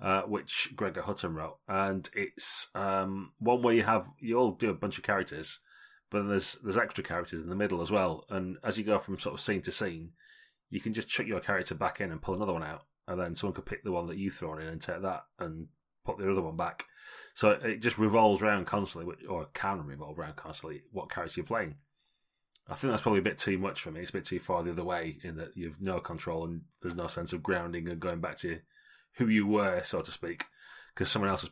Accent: British